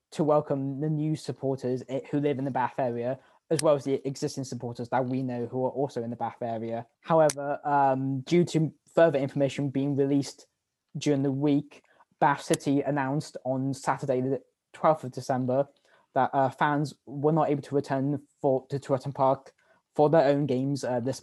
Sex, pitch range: male, 130-145 Hz